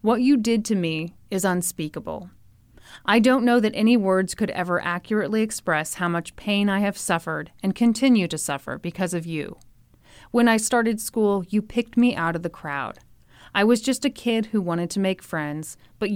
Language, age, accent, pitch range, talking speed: English, 30-49, American, 155-225 Hz, 195 wpm